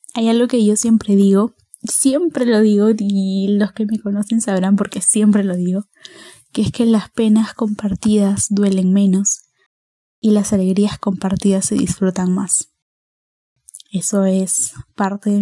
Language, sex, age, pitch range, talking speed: Spanish, female, 10-29, 195-225 Hz, 150 wpm